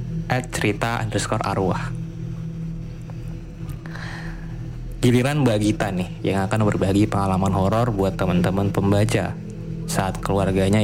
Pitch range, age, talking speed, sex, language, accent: 105-155 Hz, 20-39, 85 wpm, male, Indonesian, native